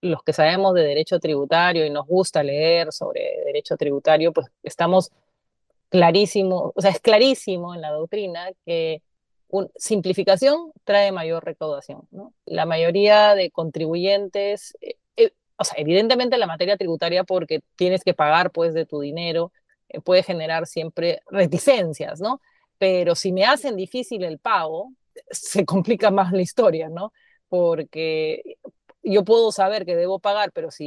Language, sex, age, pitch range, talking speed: Spanish, female, 30-49, 165-205 Hz, 155 wpm